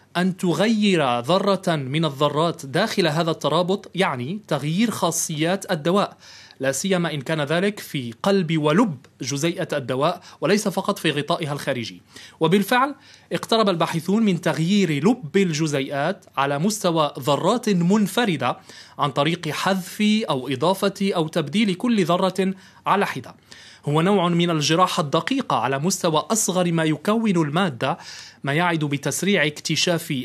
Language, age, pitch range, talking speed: Arabic, 30-49, 150-195 Hz, 125 wpm